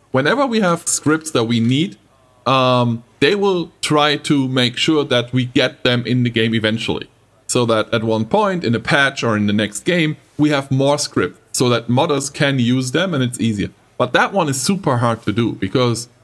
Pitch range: 120-160 Hz